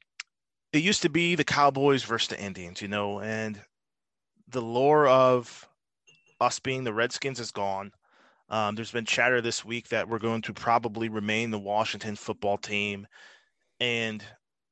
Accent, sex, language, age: American, male, English, 30-49